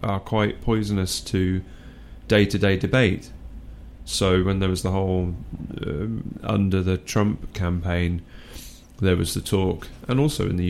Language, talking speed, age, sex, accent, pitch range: English, 135 wpm, 30-49, male, British, 90-105 Hz